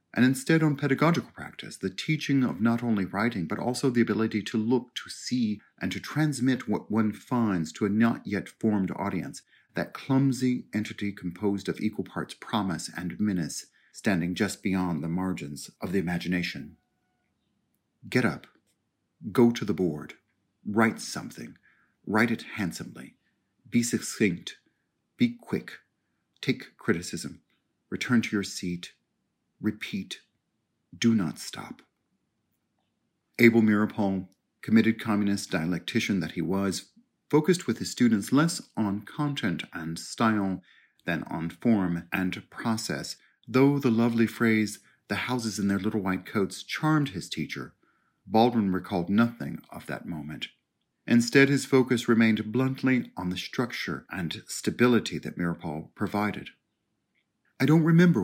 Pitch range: 95-125 Hz